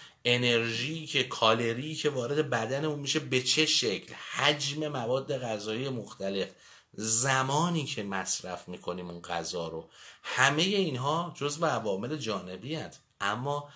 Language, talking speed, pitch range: Persian, 130 wpm, 100-155 Hz